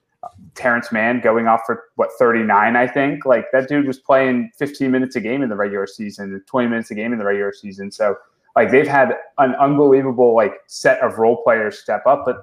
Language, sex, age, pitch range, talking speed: English, male, 20-39, 100-120 Hz, 215 wpm